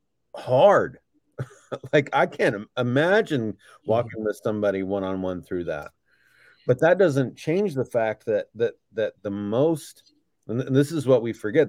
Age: 40-59